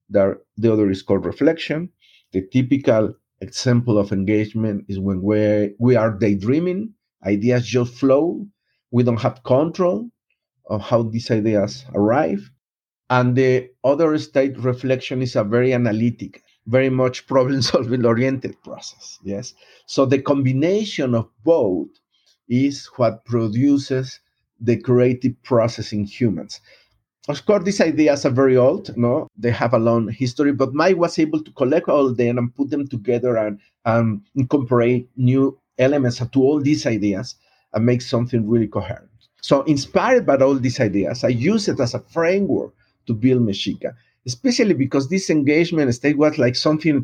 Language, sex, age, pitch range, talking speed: English, male, 50-69, 115-150 Hz, 150 wpm